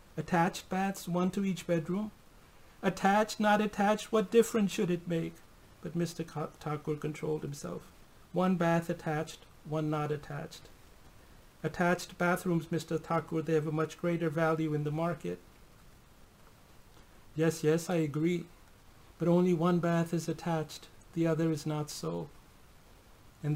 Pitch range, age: 155-180 Hz, 60-79